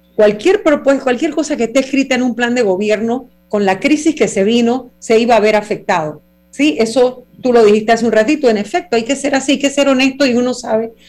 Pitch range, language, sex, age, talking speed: 205-260 Hz, Spanish, female, 40-59, 235 wpm